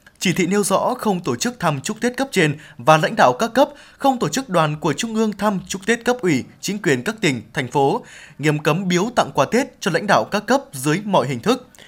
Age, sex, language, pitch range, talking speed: 20-39, male, Vietnamese, 150-205 Hz, 255 wpm